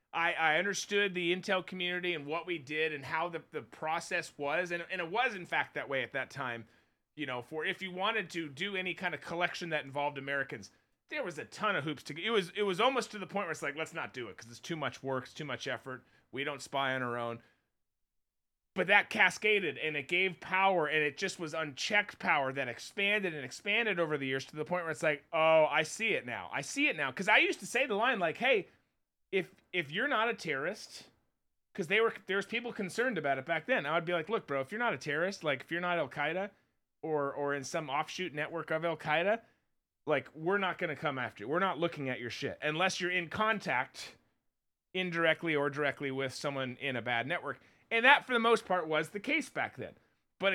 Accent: American